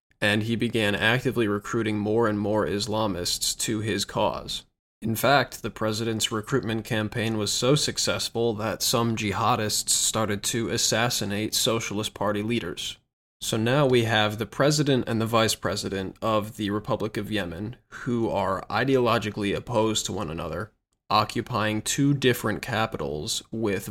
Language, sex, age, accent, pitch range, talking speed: English, male, 20-39, American, 105-115 Hz, 145 wpm